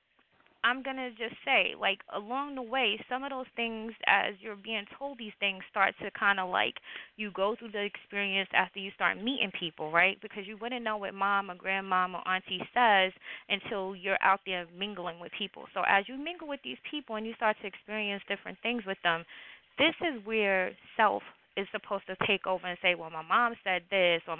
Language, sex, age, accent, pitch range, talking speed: English, female, 20-39, American, 180-225 Hz, 215 wpm